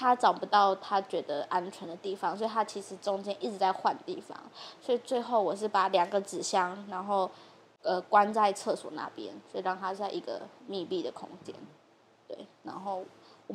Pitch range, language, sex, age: 185-215 Hz, Chinese, female, 10-29